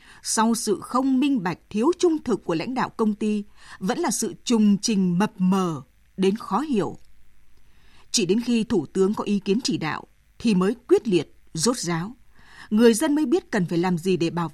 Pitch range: 185-250 Hz